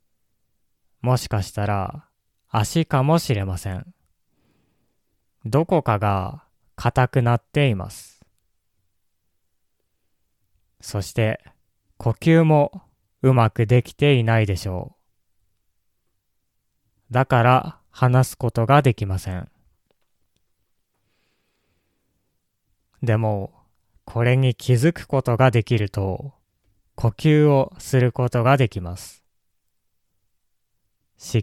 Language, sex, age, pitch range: Japanese, male, 20-39, 95-130 Hz